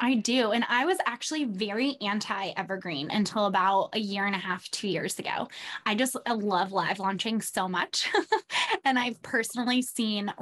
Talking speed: 165 wpm